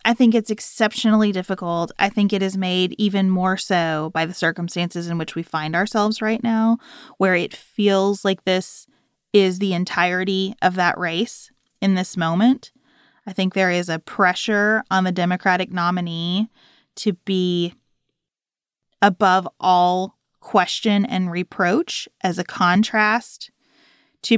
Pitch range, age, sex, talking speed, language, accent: 180-230 Hz, 20-39, female, 145 wpm, English, American